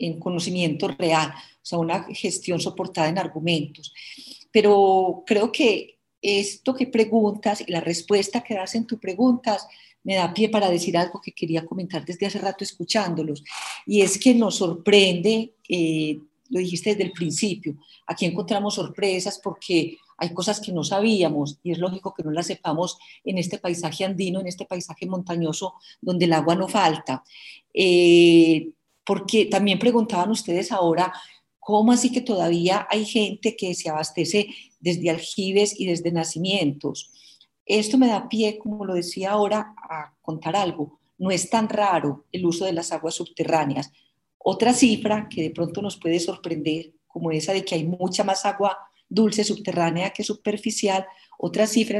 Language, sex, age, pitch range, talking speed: Spanish, female, 40-59, 170-210 Hz, 160 wpm